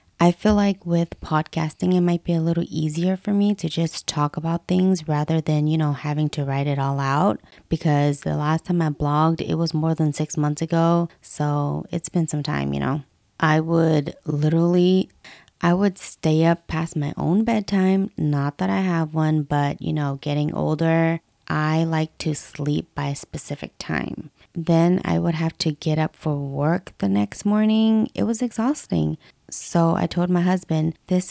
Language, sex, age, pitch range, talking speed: English, female, 20-39, 150-180 Hz, 190 wpm